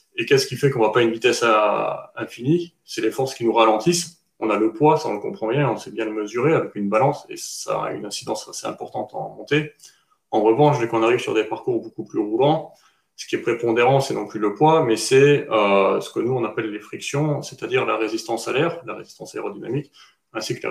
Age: 30-49